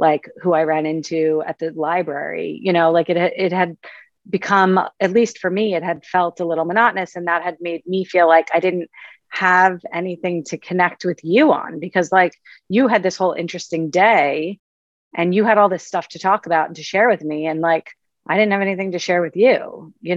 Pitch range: 165-205 Hz